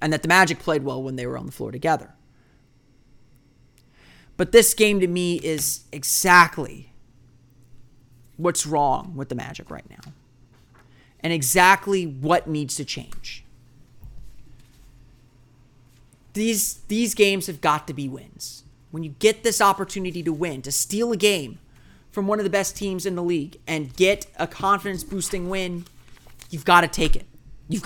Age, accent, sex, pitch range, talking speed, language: 30-49, American, male, 130-185 Hz, 155 wpm, English